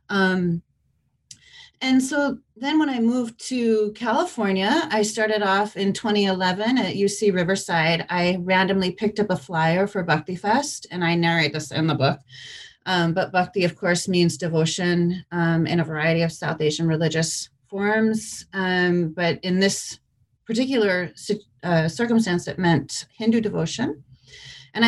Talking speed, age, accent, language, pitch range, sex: 145 wpm, 30-49, American, English, 170-215 Hz, female